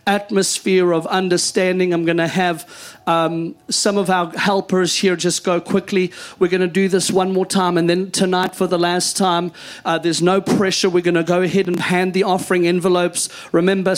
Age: 40-59